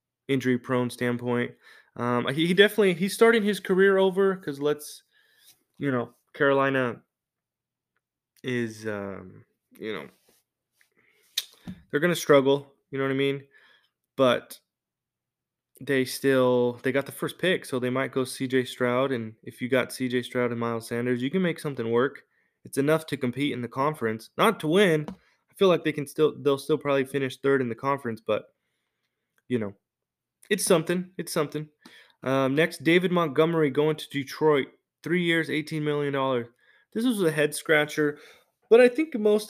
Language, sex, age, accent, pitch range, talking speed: English, male, 20-39, American, 125-165 Hz, 165 wpm